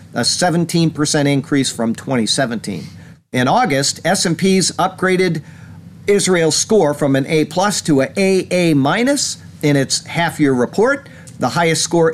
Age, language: 50-69, English